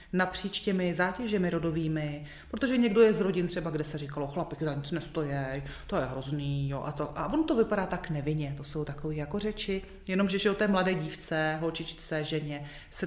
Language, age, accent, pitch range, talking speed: Czech, 30-49, native, 155-205 Hz, 195 wpm